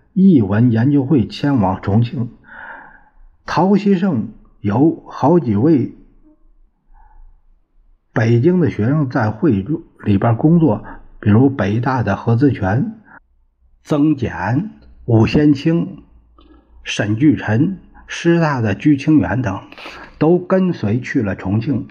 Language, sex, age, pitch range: Chinese, male, 60-79, 105-160 Hz